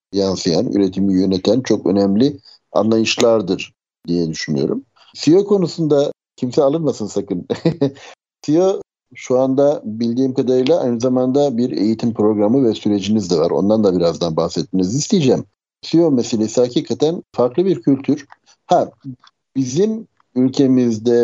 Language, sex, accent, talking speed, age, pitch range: Turkish, male, native, 115 wpm, 60-79, 100-135 Hz